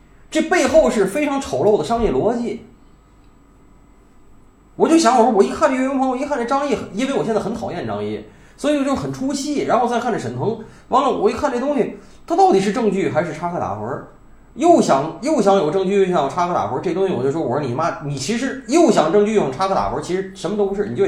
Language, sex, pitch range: Chinese, male, 190-270 Hz